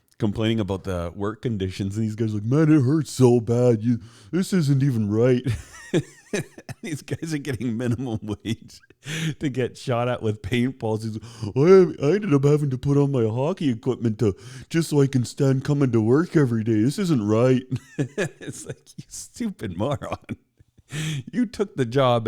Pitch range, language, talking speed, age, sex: 95-125 Hz, English, 180 wpm, 40-59, male